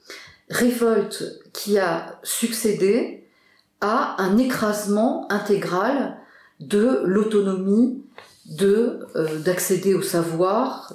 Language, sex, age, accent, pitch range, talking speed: French, female, 50-69, French, 180-235 Hz, 70 wpm